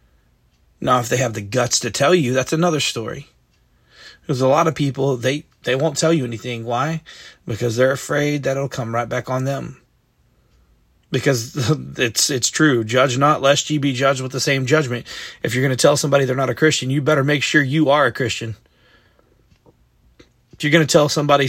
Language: English